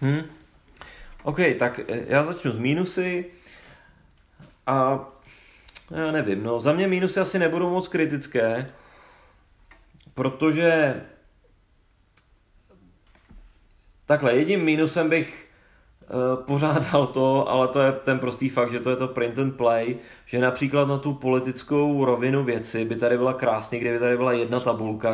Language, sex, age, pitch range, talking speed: Czech, male, 30-49, 120-140 Hz, 125 wpm